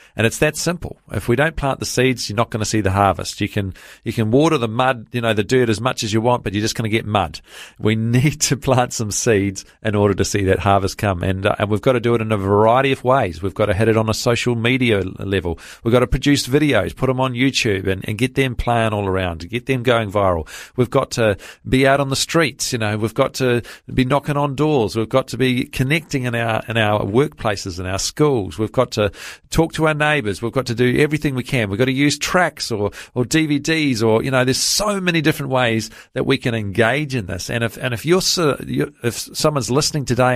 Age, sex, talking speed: 40-59, male, 255 wpm